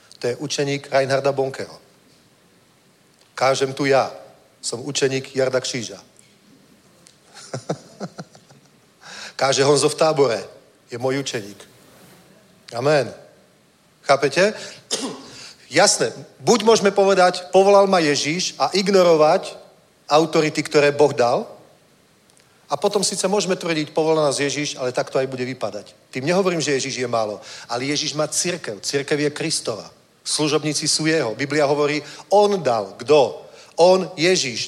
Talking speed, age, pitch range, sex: 125 wpm, 40-59, 135-175 Hz, male